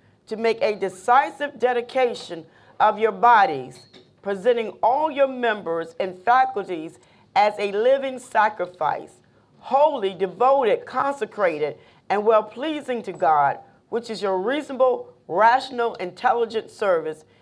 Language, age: English, 40-59